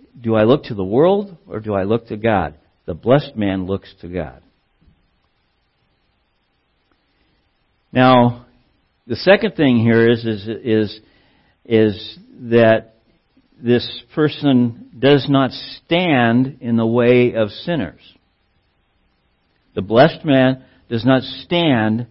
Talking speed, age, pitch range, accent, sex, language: 115 wpm, 60-79, 120-155 Hz, American, male, English